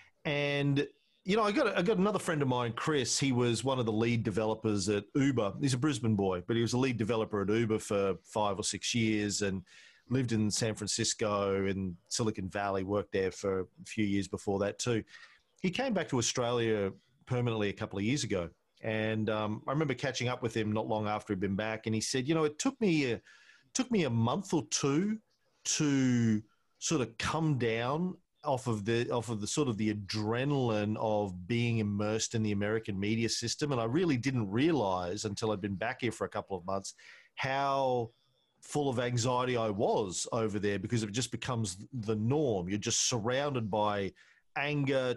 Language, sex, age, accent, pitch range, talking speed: English, male, 40-59, Australian, 105-130 Hz, 205 wpm